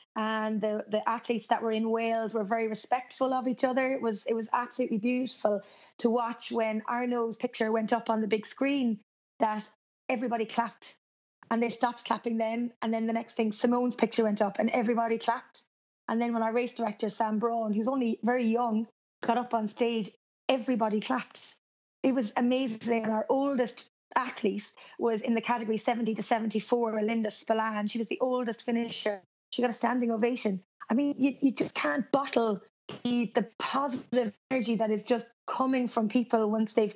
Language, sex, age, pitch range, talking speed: English, female, 20-39, 220-245 Hz, 185 wpm